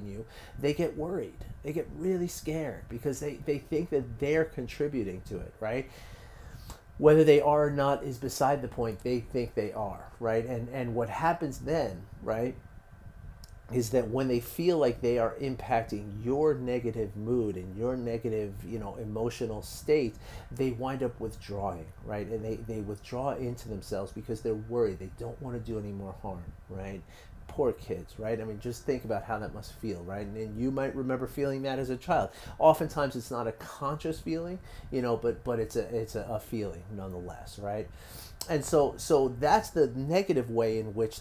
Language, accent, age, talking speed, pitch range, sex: English, American, 30-49, 190 wpm, 110-135 Hz, male